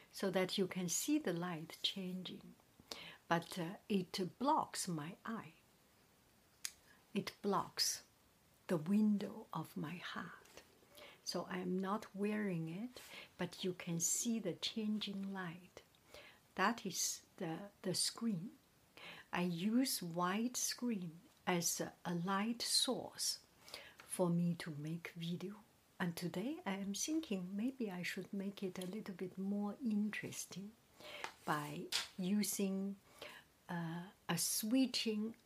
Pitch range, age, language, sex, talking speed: 175-210 Hz, 60-79, English, female, 120 wpm